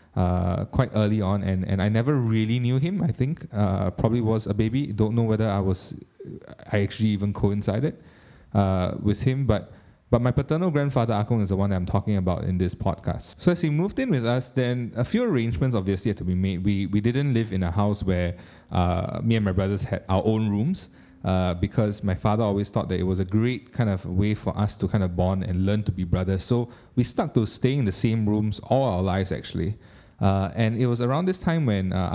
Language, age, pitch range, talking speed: English, 20-39, 95-120 Hz, 235 wpm